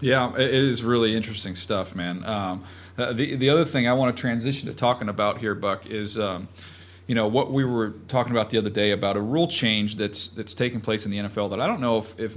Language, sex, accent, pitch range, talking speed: English, male, American, 105-125 Hz, 245 wpm